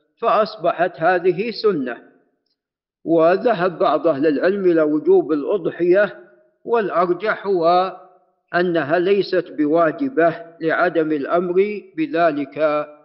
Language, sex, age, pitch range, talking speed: Arabic, male, 50-69, 160-195 Hz, 80 wpm